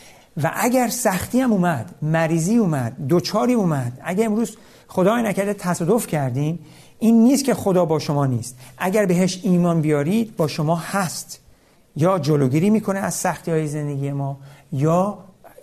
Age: 50-69